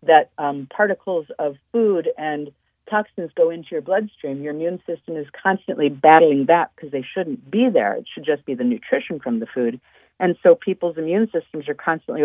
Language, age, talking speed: English, 50-69, 190 wpm